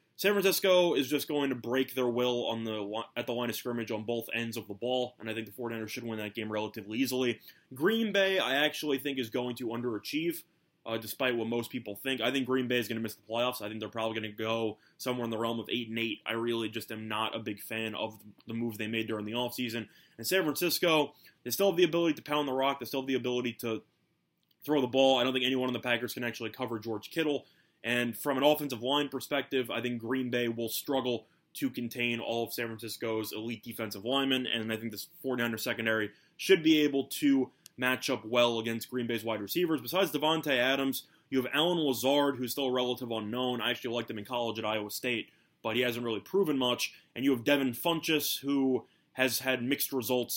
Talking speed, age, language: 240 wpm, 20-39, English